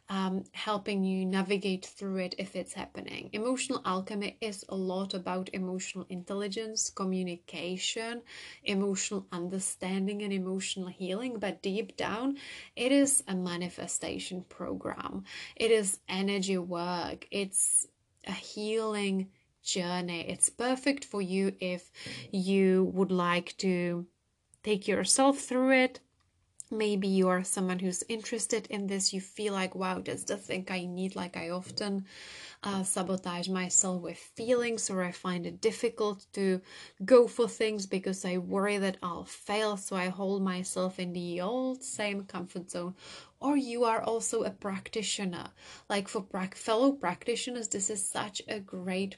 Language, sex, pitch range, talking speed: English, female, 185-215 Hz, 145 wpm